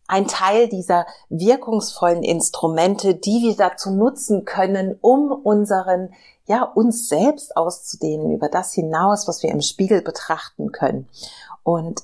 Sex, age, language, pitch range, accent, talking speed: female, 40-59, German, 160-205 Hz, German, 130 wpm